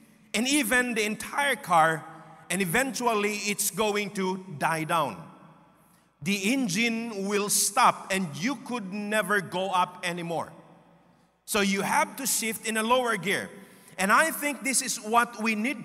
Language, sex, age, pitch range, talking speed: English, male, 50-69, 195-245 Hz, 150 wpm